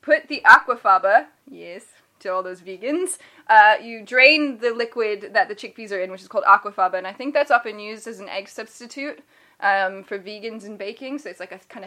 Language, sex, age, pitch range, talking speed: English, female, 10-29, 195-265 Hz, 210 wpm